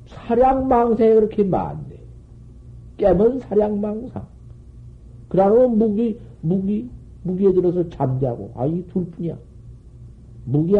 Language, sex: Korean, male